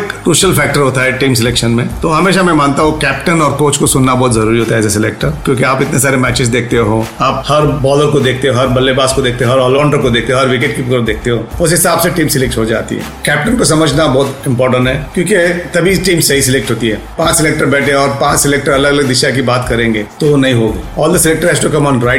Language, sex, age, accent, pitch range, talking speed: Hindi, male, 40-59, native, 125-160 Hz, 70 wpm